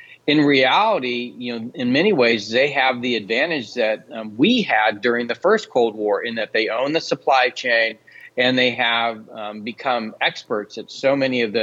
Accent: American